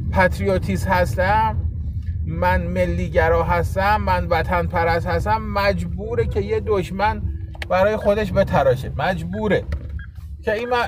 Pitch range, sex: 180-230 Hz, male